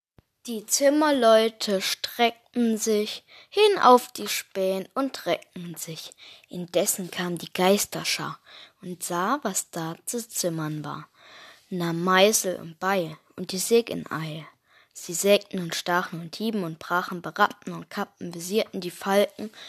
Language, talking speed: German, 135 wpm